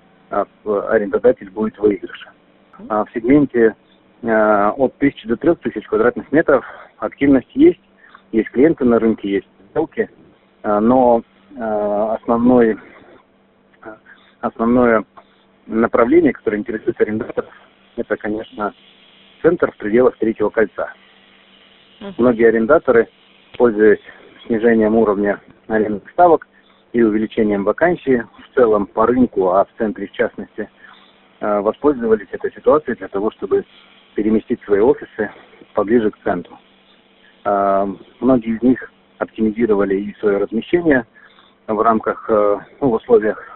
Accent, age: native, 40-59